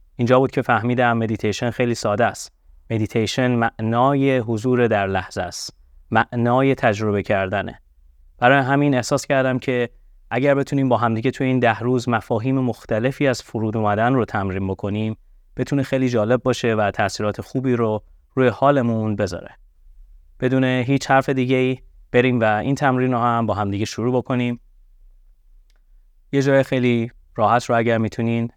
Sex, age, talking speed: male, 30-49, 150 wpm